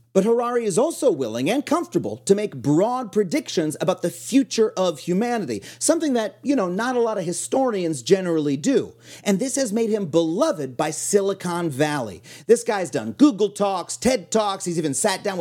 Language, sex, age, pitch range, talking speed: English, male, 40-59, 165-240 Hz, 185 wpm